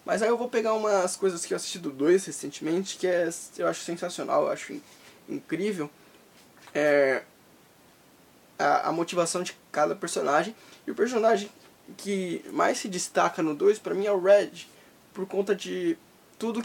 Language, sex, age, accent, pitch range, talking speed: Portuguese, male, 10-29, Brazilian, 170-230 Hz, 160 wpm